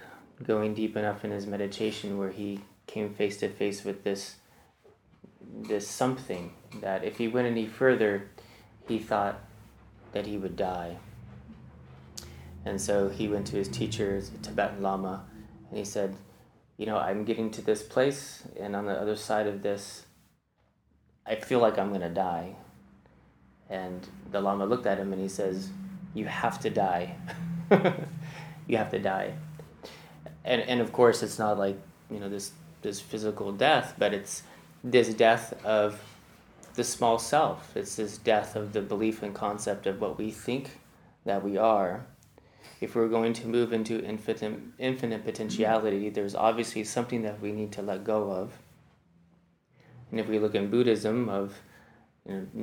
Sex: male